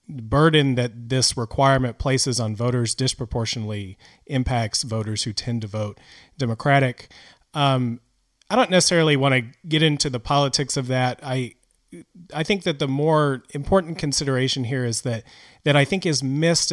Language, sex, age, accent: English, male, 30-49, American